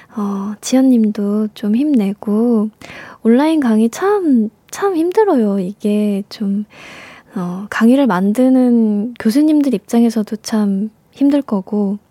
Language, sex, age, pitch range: Korean, female, 20-39, 210-245 Hz